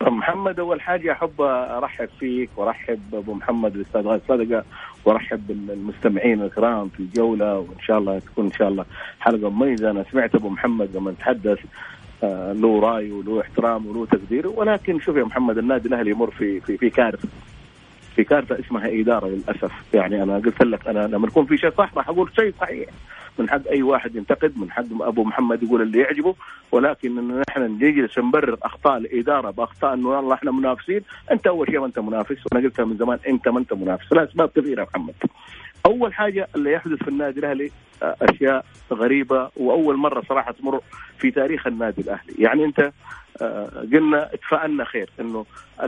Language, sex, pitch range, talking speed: Arabic, male, 110-145 Hz, 170 wpm